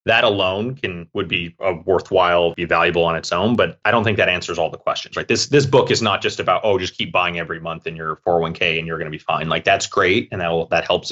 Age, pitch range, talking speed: 30-49, 85-105 Hz, 275 wpm